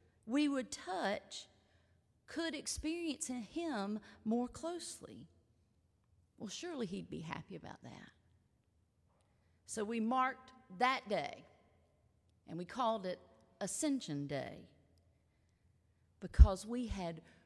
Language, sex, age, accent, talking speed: English, female, 50-69, American, 100 wpm